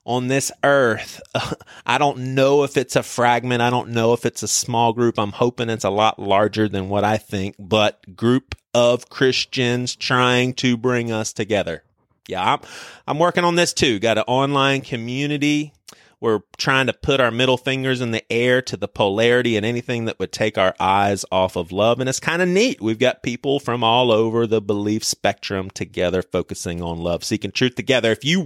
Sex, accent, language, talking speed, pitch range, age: male, American, English, 200 wpm, 105-135 Hz, 30-49